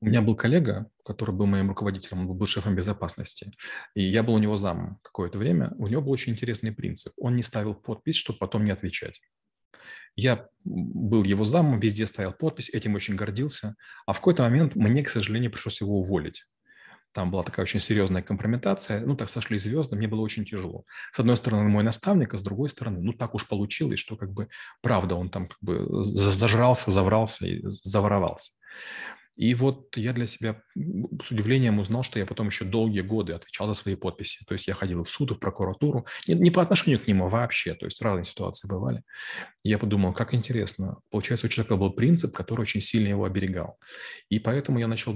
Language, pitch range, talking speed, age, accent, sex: Russian, 100-120 Hz, 200 wpm, 30-49, native, male